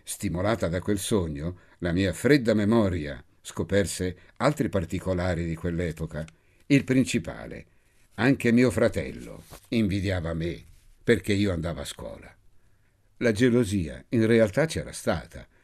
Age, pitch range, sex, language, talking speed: 60-79, 85-120 Hz, male, Italian, 120 wpm